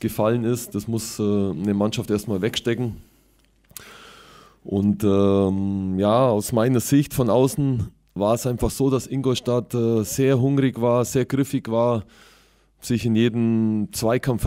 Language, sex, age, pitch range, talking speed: German, male, 20-39, 105-125 Hz, 135 wpm